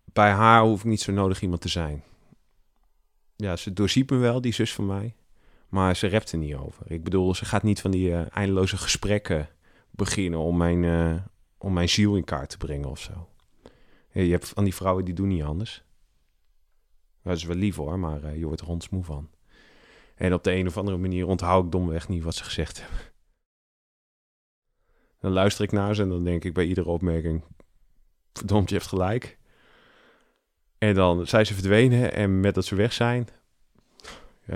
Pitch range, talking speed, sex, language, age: 85-105 Hz, 190 wpm, male, Dutch, 30-49